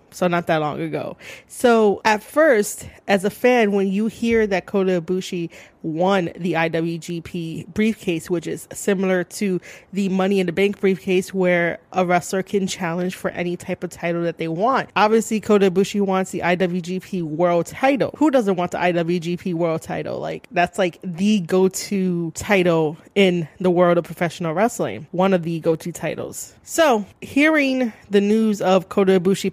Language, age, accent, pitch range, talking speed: English, 20-39, American, 175-215 Hz, 170 wpm